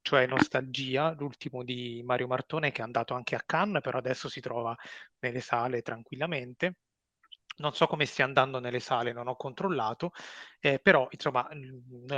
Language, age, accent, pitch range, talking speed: Italian, 30-49, native, 125-145 Hz, 165 wpm